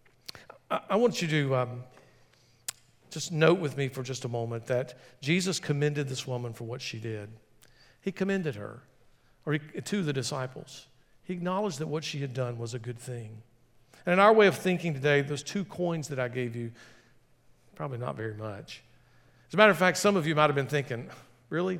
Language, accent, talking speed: English, American, 200 wpm